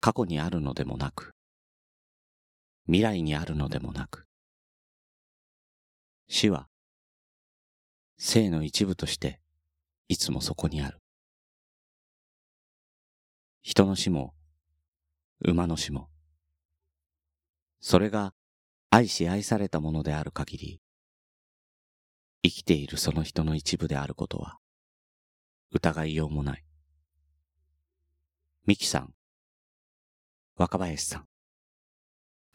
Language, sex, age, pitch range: Japanese, male, 40-59, 75-85 Hz